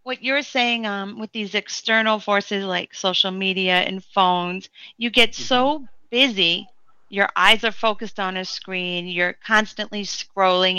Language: English